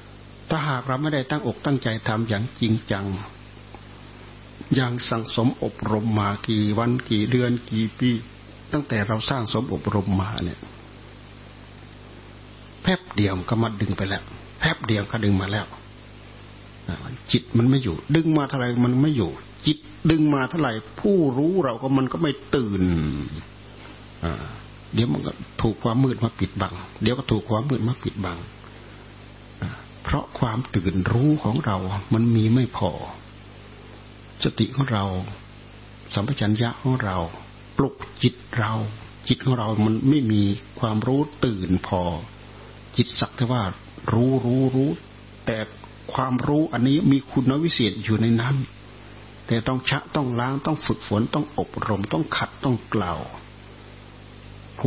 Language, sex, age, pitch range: Thai, male, 60-79, 100-125 Hz